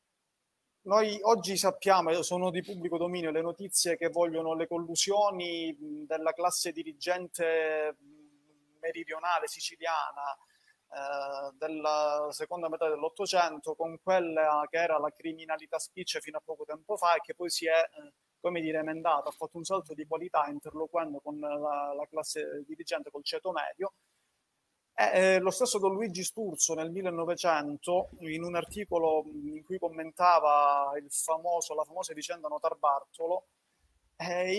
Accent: native